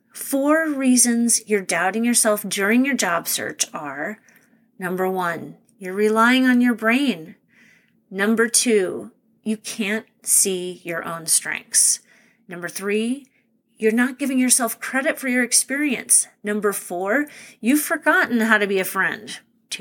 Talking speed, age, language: 135 wpm, 30-49, English